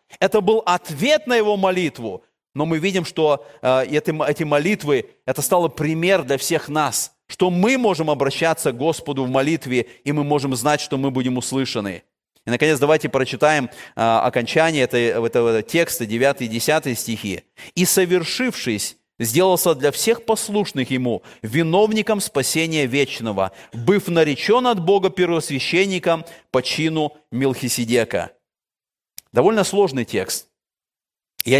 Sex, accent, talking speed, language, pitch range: male, native, 130 wpm, Russian, 130-190 Hz